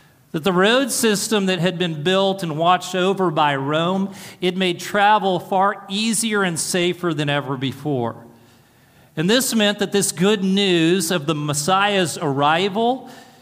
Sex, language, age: male, English, 40-59